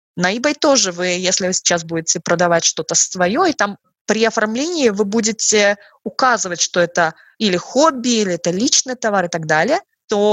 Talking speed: 175 wpm